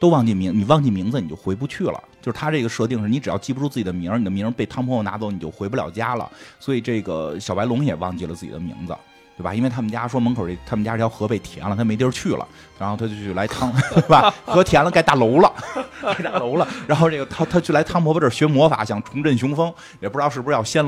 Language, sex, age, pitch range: Chinese, male, 30-49, 100-135 Hz